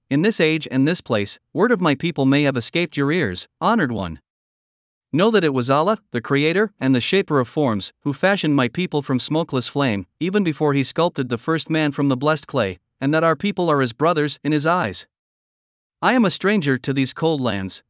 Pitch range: 135-175 Hz